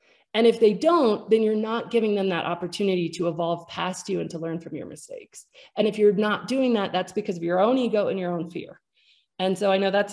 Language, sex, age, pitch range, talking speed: English, female, 30-49, 190-255 Hz, 250 wpm